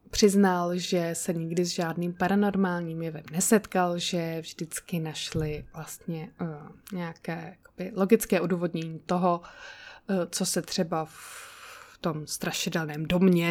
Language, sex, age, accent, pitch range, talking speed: Czech, female, 20-39, native, 175-220 Hz, 120 wpm